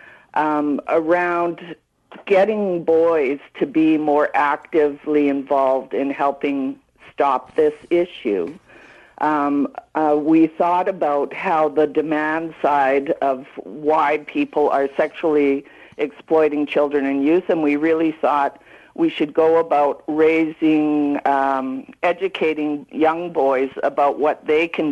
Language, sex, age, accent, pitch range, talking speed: English, female, 60-79, American, 145-160 Hz, 120 wpm